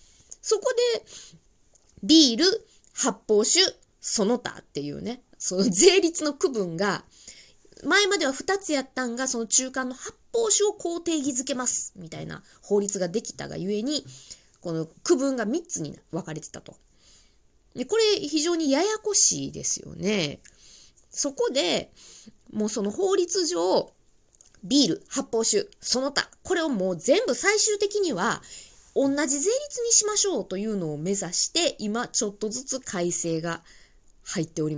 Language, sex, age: Japanese, female, 20-39